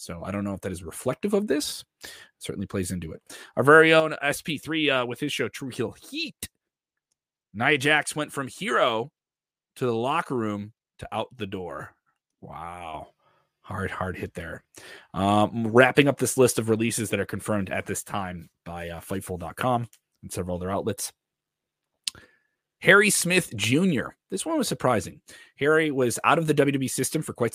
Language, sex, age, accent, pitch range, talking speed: English, male, 30-49, American, 100-135 Hz, 175 wpm